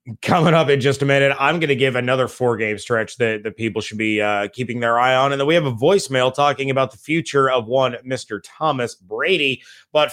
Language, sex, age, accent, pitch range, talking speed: English, male, 30-49, American, 120-140 Hz, 230 wpm